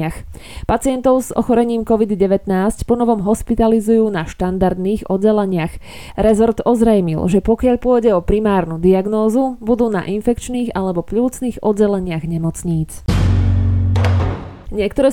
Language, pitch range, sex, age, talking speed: Slovak, 185-235 Hz, female, 20-39, 100 wpm